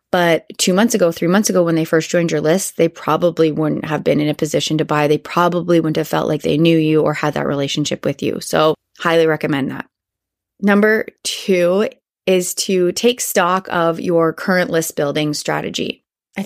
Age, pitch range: 20-39, 160-190 Hz